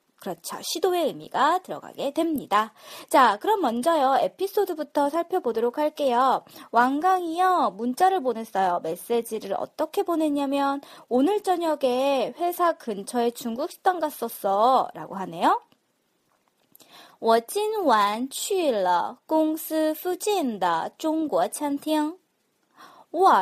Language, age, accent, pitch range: Korean, 20-39, native, 230-350 Hz